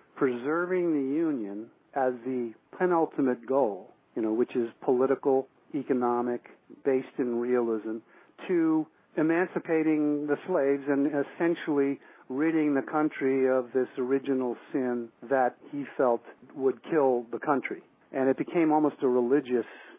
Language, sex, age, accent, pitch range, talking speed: English, male, 50-69, American, 120-150 Hz, 125 wpm